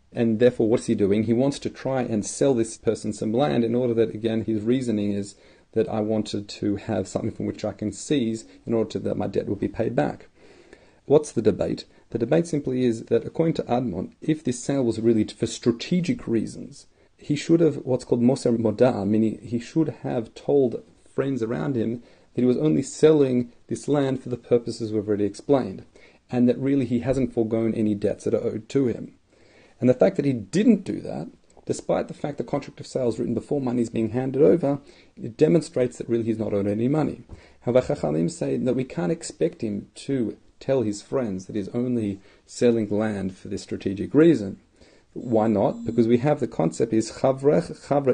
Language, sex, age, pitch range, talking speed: English, male, 40-59, 110-135 Hz, 205 wpm